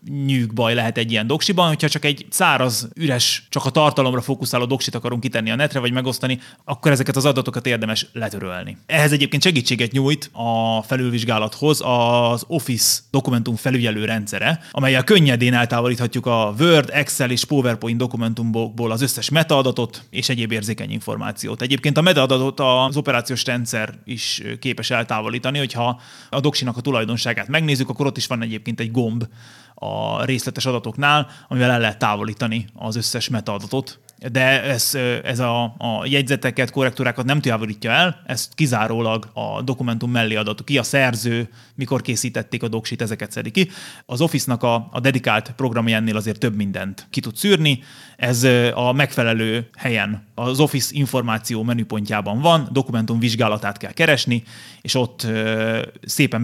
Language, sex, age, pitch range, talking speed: Hungarian, male, 30-49, 115-135 Hz, 150 wpm